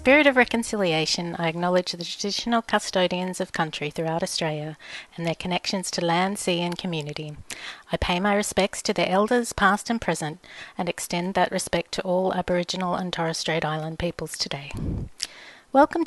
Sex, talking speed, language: female, 165 wpm, English